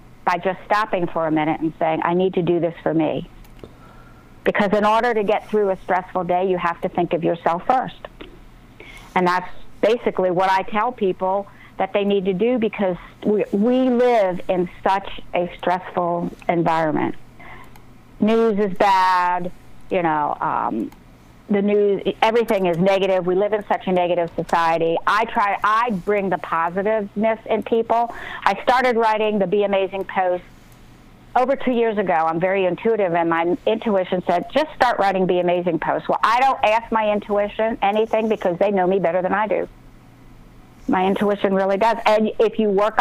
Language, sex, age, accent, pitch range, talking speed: English, female, 50-69, American, 175-215 Hz, 175 wpm